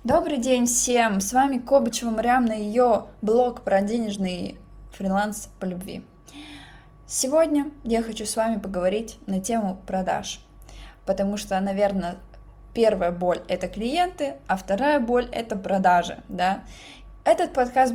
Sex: female